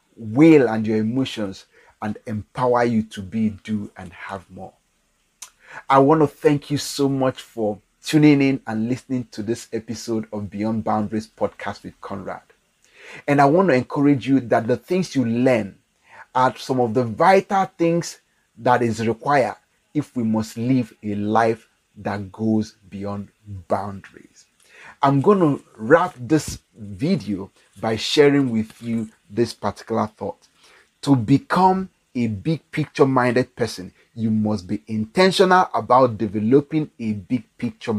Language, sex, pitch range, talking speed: English, male, 110-140 Hz, 145 wpm